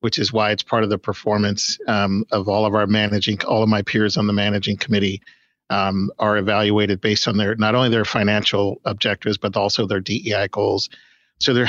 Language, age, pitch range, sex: English, 50-69, 105-125 Hz, male